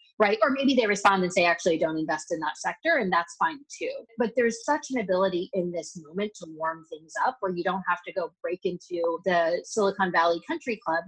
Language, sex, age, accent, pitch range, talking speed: English, female, 30-49, American, 165-205 Hz, 225 wpm